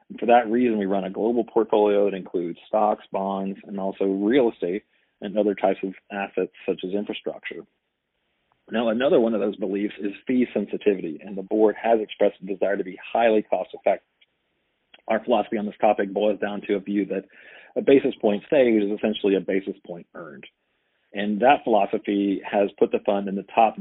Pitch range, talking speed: 95-105 Hz, 190 wpm